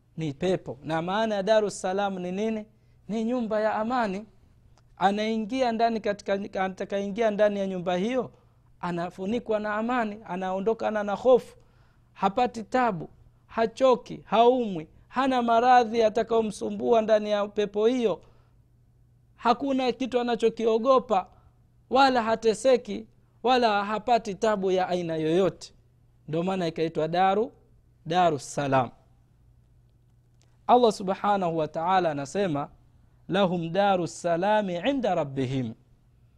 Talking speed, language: 105 wpm, Swahili